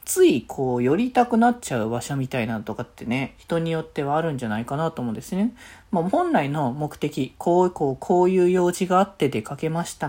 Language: Japanese